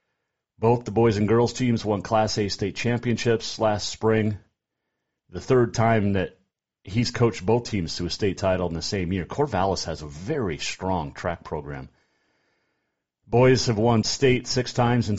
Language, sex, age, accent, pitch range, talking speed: English, male, 40-59, American, 90-120 Hz, 170 wpm